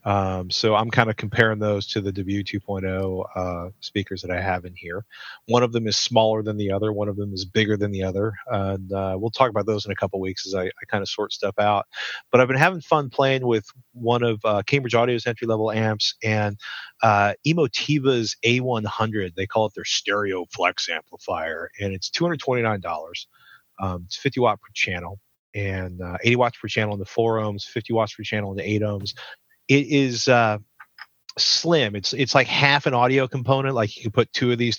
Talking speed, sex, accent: 200 wpm, male, American